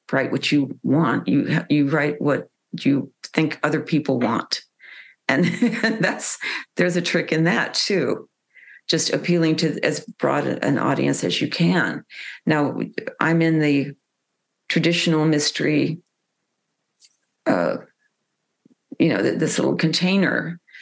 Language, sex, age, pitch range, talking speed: English, female, 50-69, 150-170 Hz, 125 wpm